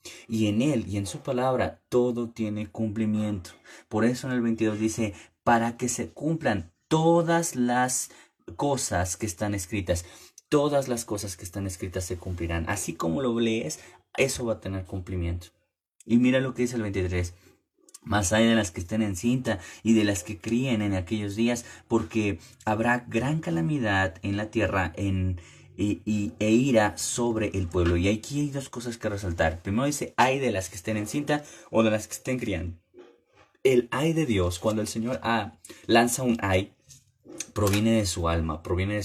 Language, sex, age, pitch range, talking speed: Spanish, male, 30-49, 95-120 Hz, 180 wpm